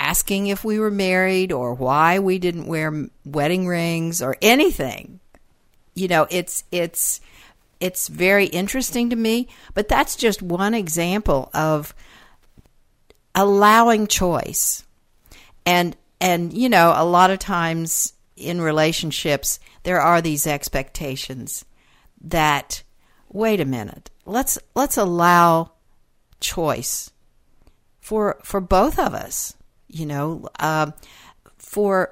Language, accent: English, American